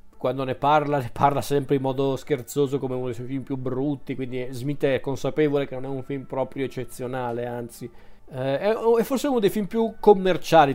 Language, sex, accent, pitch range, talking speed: Italian, male, native, 130-170 Hz, 200 wpm